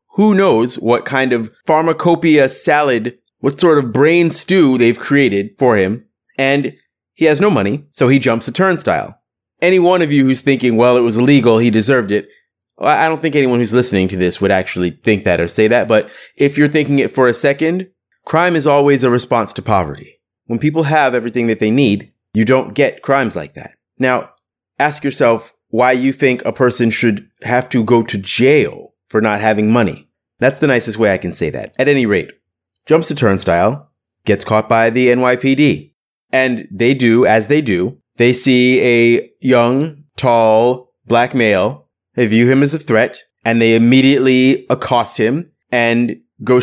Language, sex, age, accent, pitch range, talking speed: English, male, 30-49, American, 115-150 Hz, 185 wpm